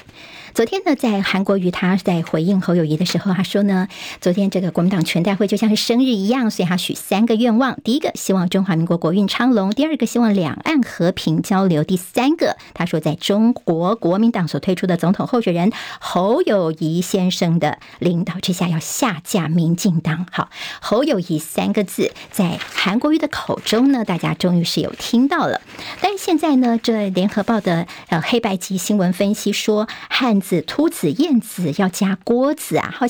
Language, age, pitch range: Chinese, 50-69, 180-235 Hz